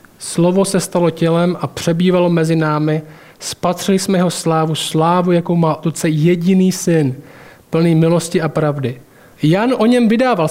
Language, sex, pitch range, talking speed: Czech, male, 155-205 Hz, 150 wpm